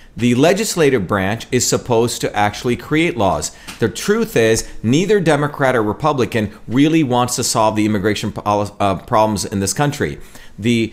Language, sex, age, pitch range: English, male, 40-59, 115-150 Hz